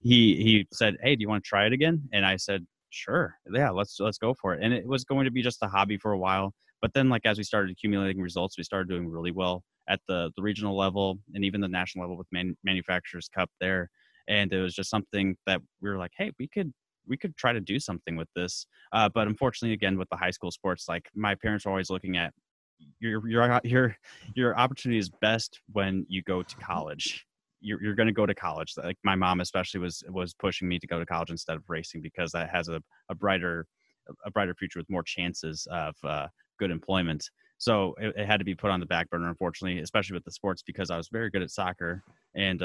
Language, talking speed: English, 240 wpm